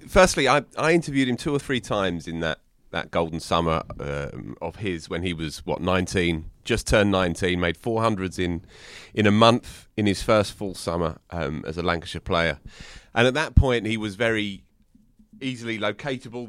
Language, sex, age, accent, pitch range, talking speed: English, male, 30-49, British, 85-115 Hz, 180 wpm